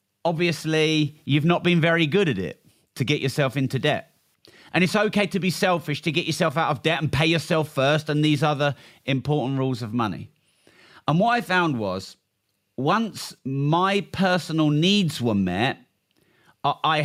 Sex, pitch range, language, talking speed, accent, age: male, 120-150 Hz, English, 170 wpm, British, 40-59